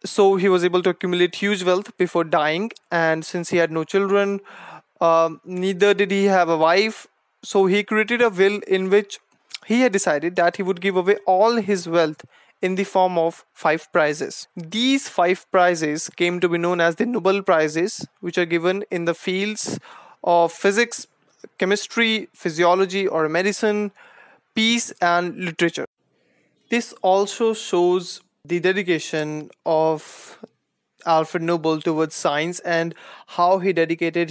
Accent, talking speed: Indian, 150 wpm